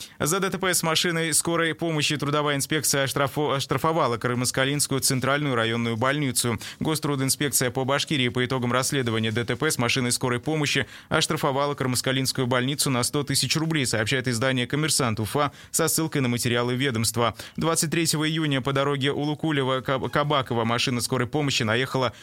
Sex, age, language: male, 20-39, Russian